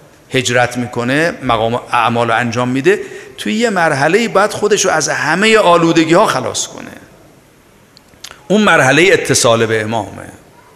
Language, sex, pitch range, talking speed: Persian, male, 120-150 Hz, 135 wpm